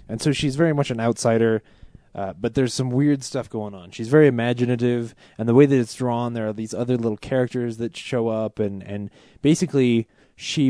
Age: 20-39